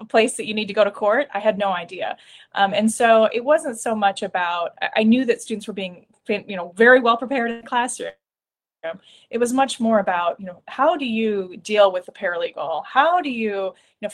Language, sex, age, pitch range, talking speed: English, female, 20-39, 190-230 Hz, 230 wpm